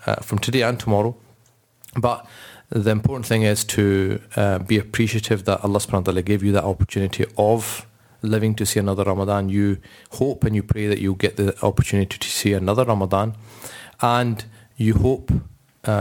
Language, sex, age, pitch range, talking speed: English, male, 40-59, 100-115 Hz, 175 wpm